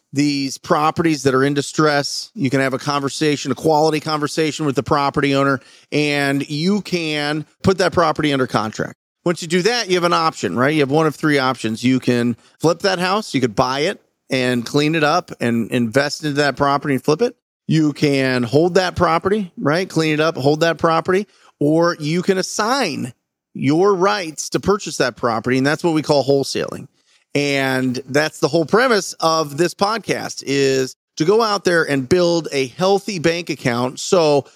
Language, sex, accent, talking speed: English, male, American, 190 wpm